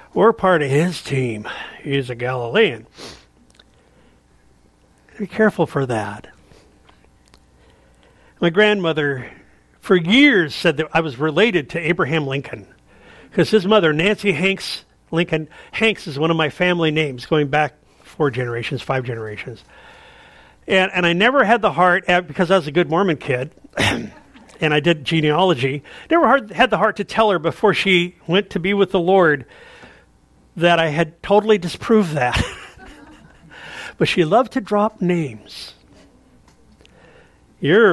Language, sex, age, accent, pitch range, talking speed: English, male, 50-69, American, 140-200 Hz, 140 wpm